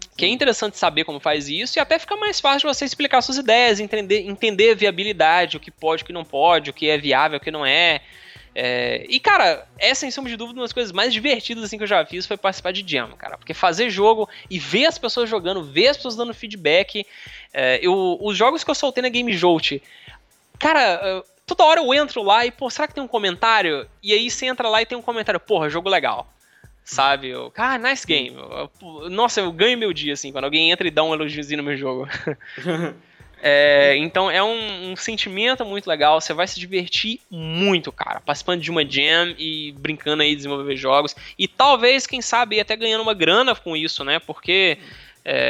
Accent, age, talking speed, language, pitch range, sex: Brazilian, 20-39, 220 wpm, Portuguese, 155-230 Hz, male